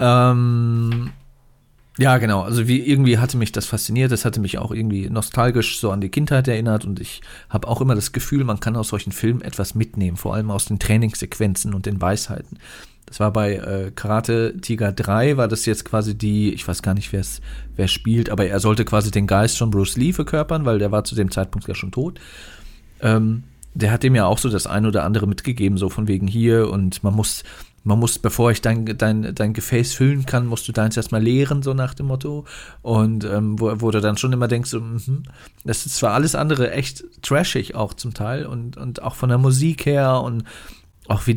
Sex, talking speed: male, 215 wpm